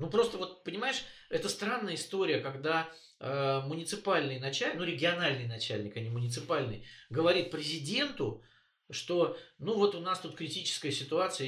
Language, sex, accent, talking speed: Russian, male, native, 140 wpm